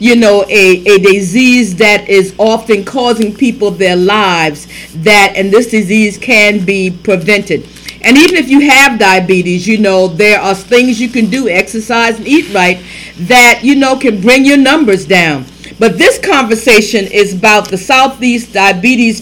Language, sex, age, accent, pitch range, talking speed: English, female, 50-69, American, 195-245 Hz, 165 wpm